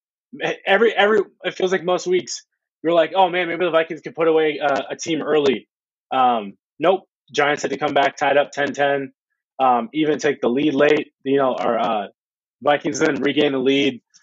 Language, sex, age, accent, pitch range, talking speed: English, male, 20-39, American, 120-150 Hz, 200 wpm